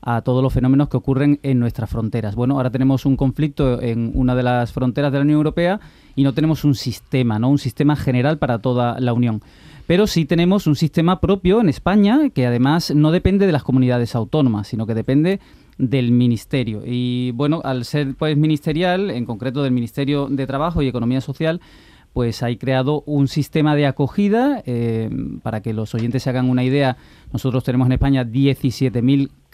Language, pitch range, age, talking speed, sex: Spanish, 125-150 Hz, 30-49, 190 wpm, male